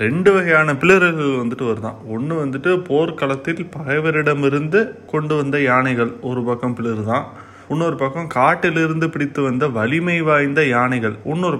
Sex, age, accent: male, 20-39, native